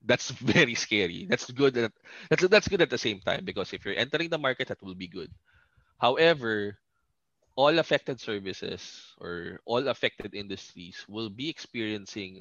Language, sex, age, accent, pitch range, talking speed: English, male, 20-39, Filipino, 95-135 Hz, 165 wpm